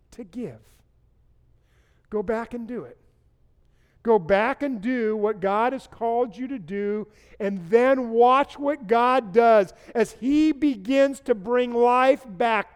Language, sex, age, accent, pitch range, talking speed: English, male, 50-69, American, 170-235 Hz, 145 wpm